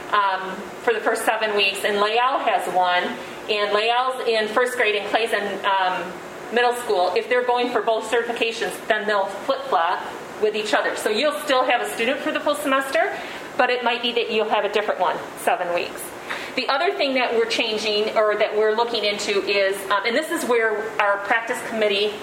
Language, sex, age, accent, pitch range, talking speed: English, female, 40-59, American, 205-250 Hz, 200 wpm